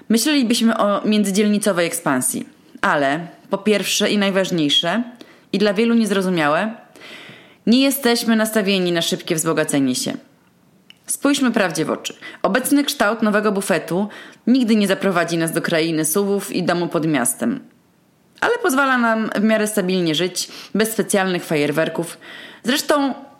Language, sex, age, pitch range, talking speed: Polish, female, 20-39, 180-230 Hz, 130 wpm